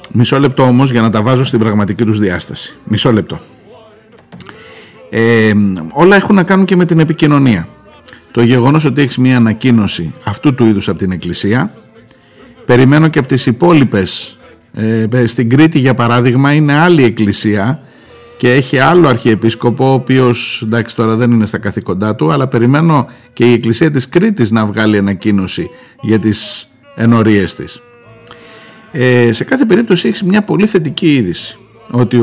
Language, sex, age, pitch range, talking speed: Greek, male, 50-69, 110-150 Hz, 155 wpm